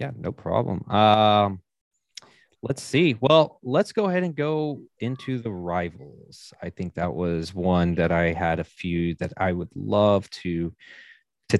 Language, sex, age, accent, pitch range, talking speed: English, male, 30-49, American, 90-110 Hz, 160 wpm